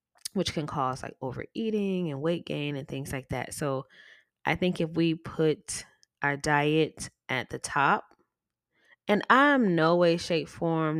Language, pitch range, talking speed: English, 135-165 Hz, 160 wpm